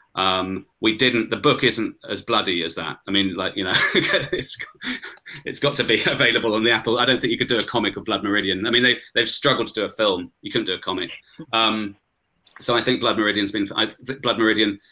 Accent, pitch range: British, 100-115 Hz